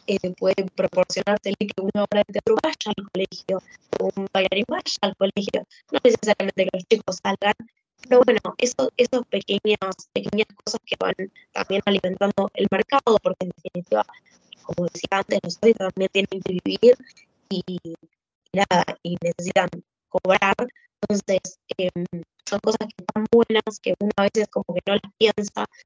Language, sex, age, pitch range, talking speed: Spanish, female, 20-39, 185-220 Hz, 150 wpm